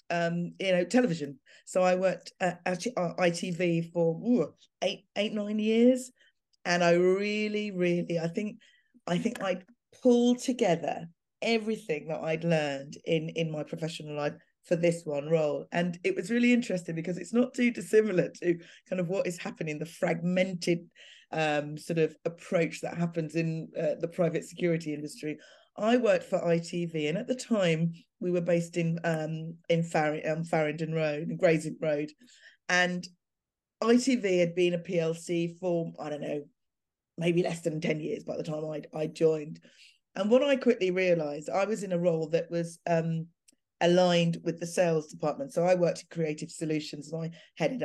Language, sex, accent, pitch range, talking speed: English, female, British, 160-185 Hz, 170 wpm